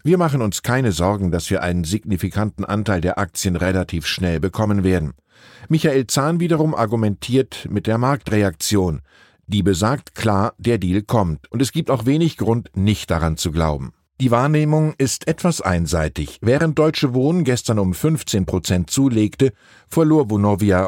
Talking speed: 155 wpm